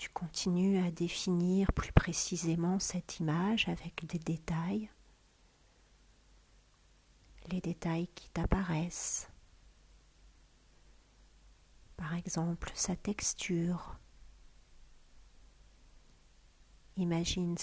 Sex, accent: female, French